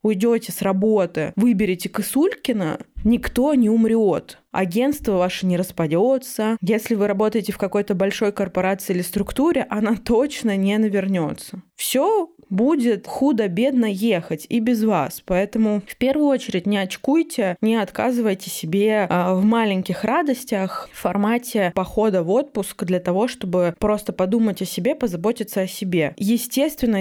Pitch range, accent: 185-235 Hz, native